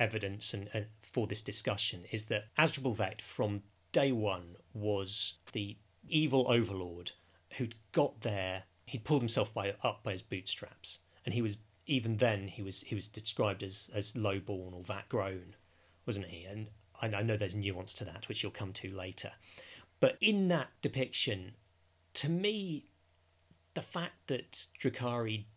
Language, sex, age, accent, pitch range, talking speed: English, male, 30-49, British, 95-115 Hz, 155 wpm